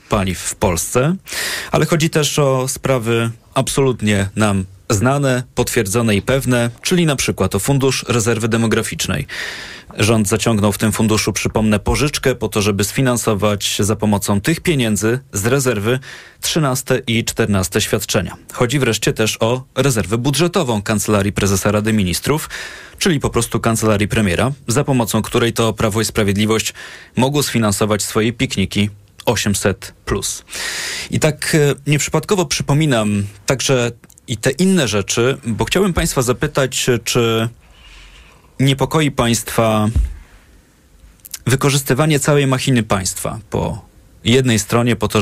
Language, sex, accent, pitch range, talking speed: Polish, male, native, 105-130 Hz, 125 wpm